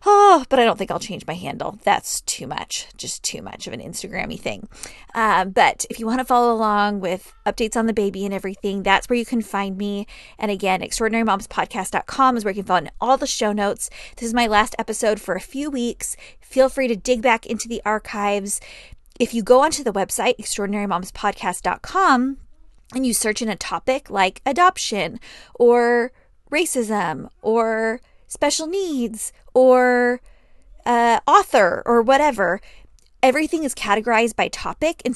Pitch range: 210-270 Hz